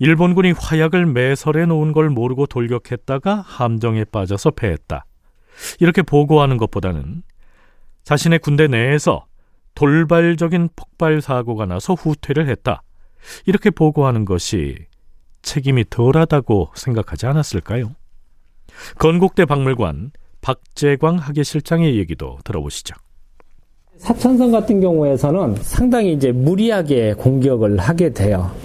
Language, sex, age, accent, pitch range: Korean, male, 40-59, native, 110-165 Hz